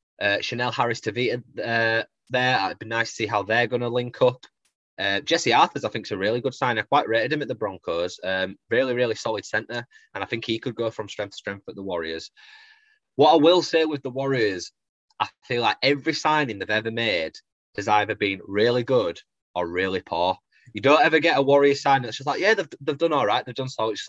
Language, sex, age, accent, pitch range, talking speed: English, male, 20-39, British, 100-135 Hz, 235 wpm